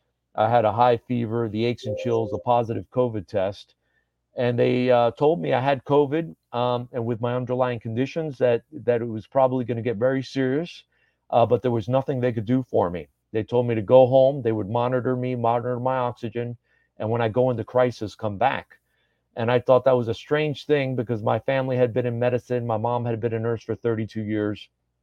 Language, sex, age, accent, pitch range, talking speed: English, male, 40-59, American, 110-125 Hz, 220 wpm